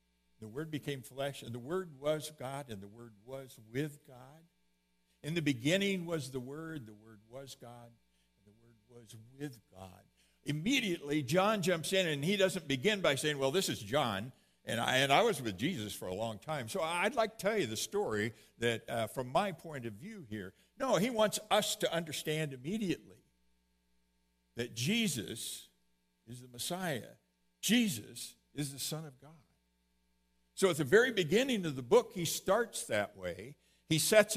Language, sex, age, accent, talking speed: English, male, 60-79, American, 180 wpm